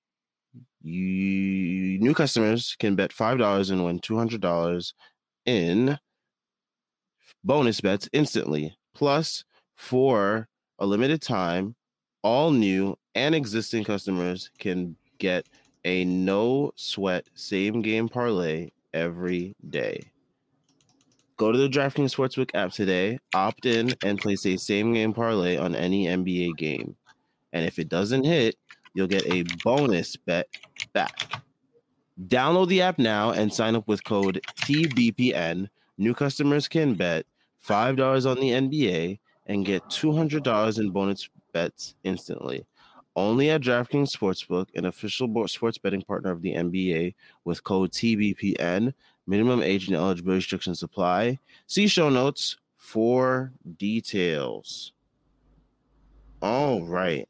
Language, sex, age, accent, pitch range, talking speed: English, male, 30-49, American, 95-125 Hz, 115 wpm